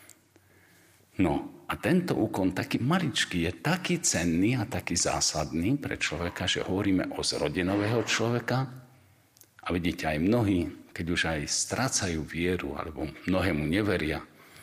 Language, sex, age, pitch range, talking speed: Slovak, male, 50-69, 80-115 Hz, 125 wpm